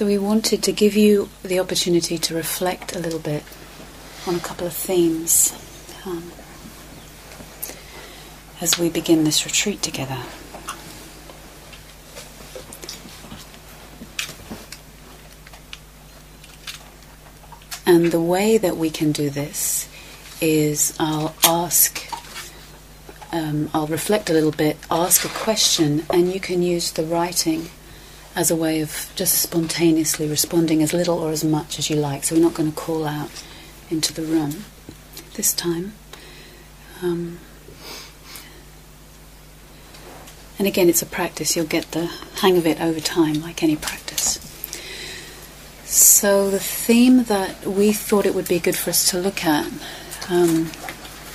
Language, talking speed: English, 130 wpm